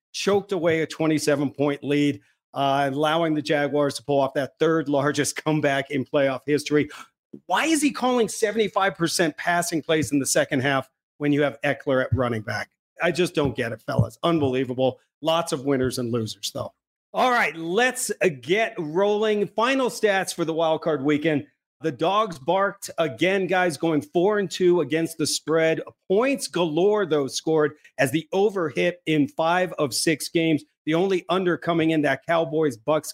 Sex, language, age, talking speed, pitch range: male, English, 40-59, 165 wpm, 145-175 Hz